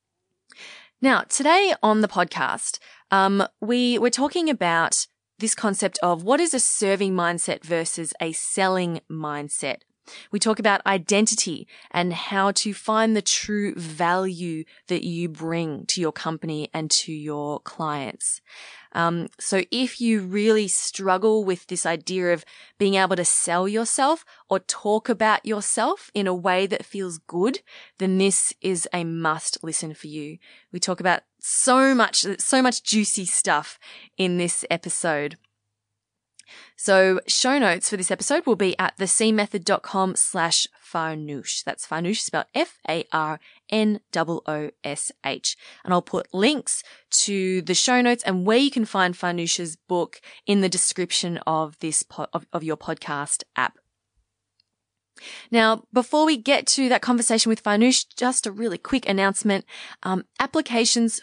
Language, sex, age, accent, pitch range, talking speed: English, female, 20-39, Australian, 165-220 Hz, 140 wpm